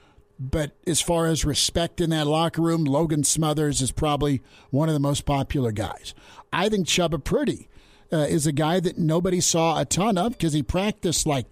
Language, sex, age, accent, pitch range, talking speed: English, male, 50-69, American, 140-175 Hz, 195 wpm